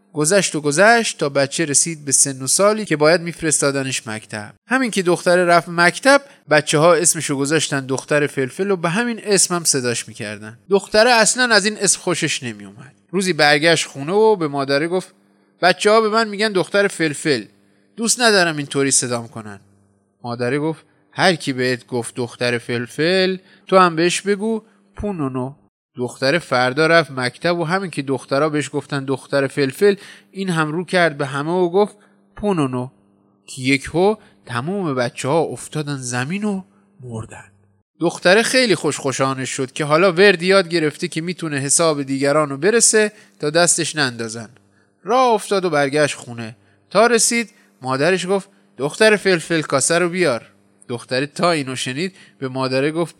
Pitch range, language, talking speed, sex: 130-190 Hz, Persian, 160 wpm, male